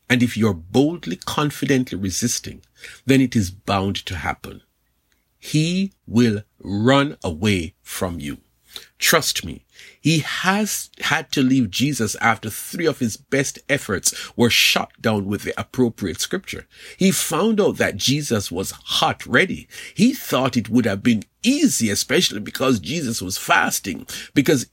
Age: 50-69